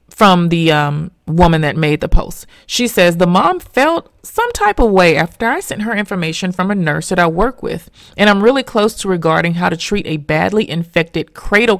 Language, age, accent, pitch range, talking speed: English, 30-49, American, 170-235 Hz, 215 wpm